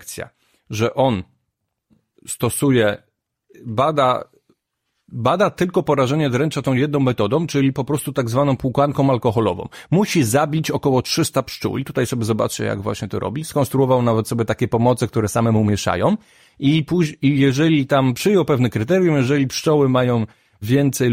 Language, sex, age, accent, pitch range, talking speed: Polish, male, 30-49, native, 115-155 Hz, 140 wpm